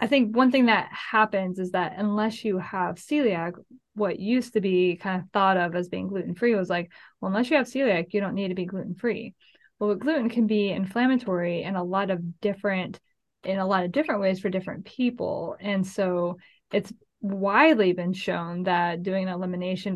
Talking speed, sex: 200 wpm, female